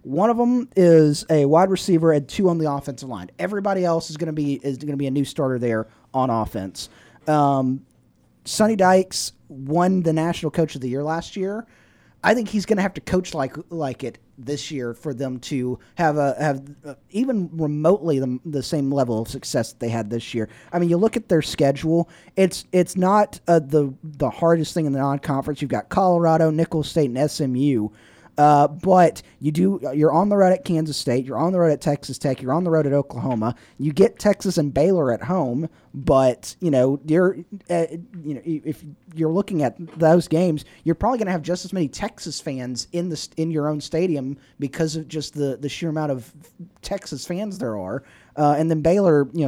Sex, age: male, 30-49